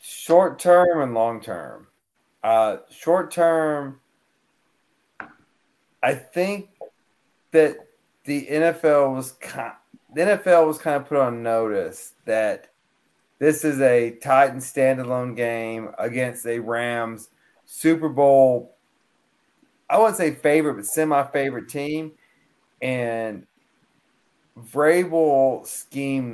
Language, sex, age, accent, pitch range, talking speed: English, male, 30-49, American, 120-155 Hz, 105 wpm